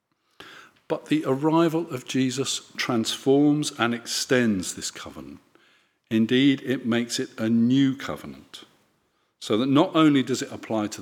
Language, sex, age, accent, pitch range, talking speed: English, male, 50-69, British, 115-165 Hz, 135 wpm